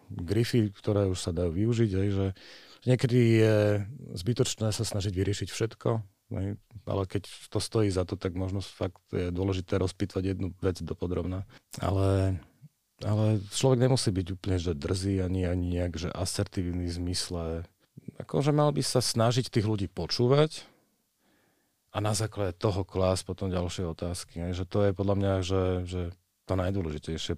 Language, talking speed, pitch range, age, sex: Slovak, 155 wpm, 85-105 Hz, 40-59, male